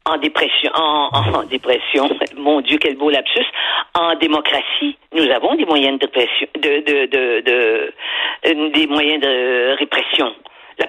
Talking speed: 155 wpm